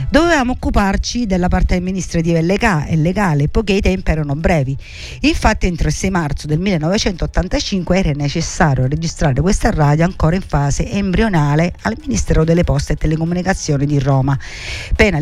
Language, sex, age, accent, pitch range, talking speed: Italian, female, 50-69, native, 145-195 Hz, 145 wpm